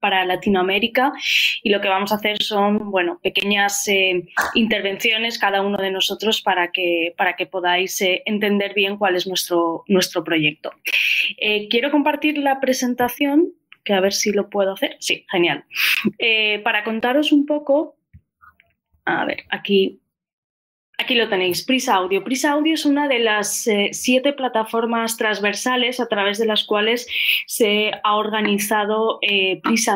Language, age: Spanish, 20-39